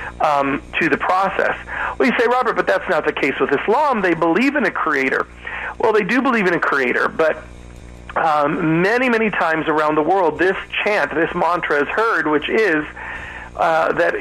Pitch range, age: 135-180 Hz, 40-59